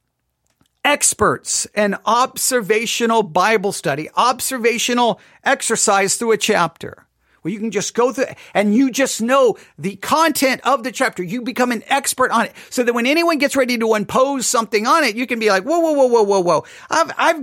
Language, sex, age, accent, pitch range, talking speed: English, male, 40-59, American, 225-305 Hz, 190 wpm